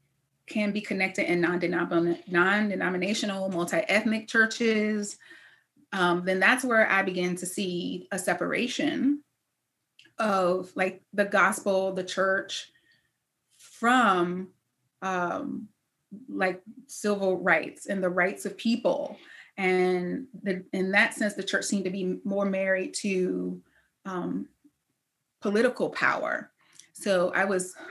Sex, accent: female, American